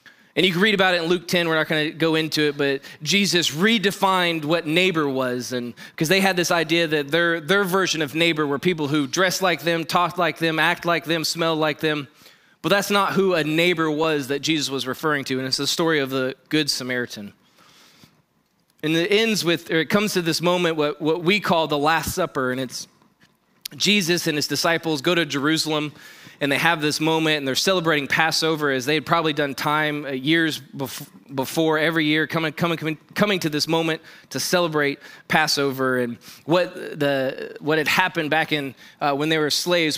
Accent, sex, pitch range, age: American, male, 150-180 Hz, 20-39